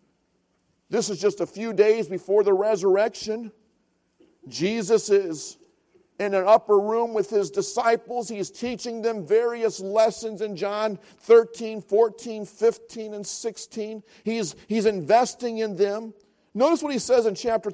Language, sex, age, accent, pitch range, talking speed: English, male, 50-69, American, 175-230 Hz, 140 wpm